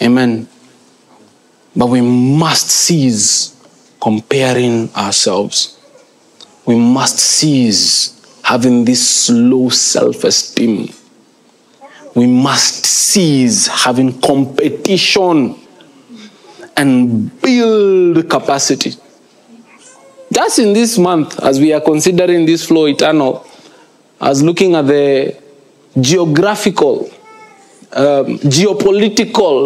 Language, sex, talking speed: English, male, 80 wpm